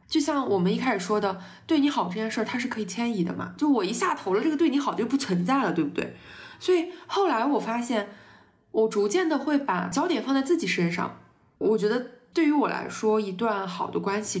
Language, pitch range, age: Chinese, 180-250 Hz, 20-39